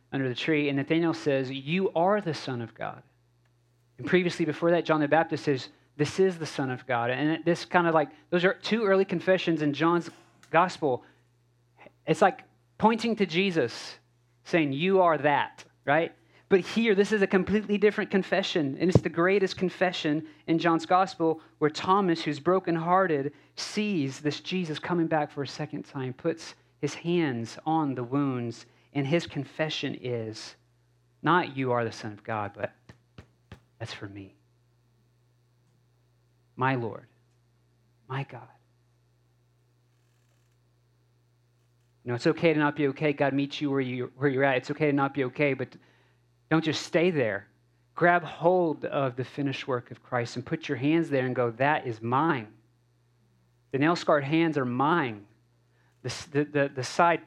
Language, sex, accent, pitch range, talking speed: English, male, American, 120-165 Hz, 165 wpm